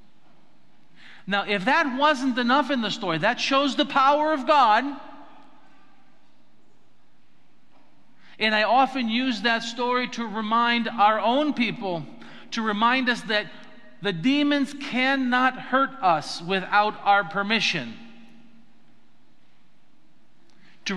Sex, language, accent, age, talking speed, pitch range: male, English, American, 50-69, 110 wpm, 210-280 Hz